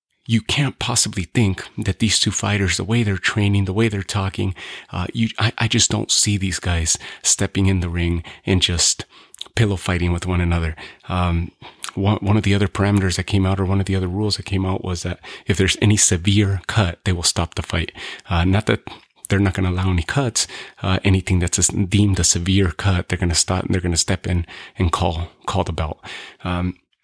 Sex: male